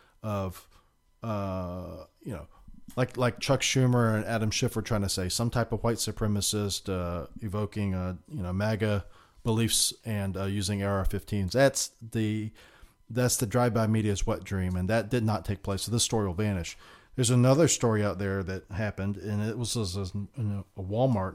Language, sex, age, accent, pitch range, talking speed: English, male, 40-59, American, 100-120 Hz, 185 wpm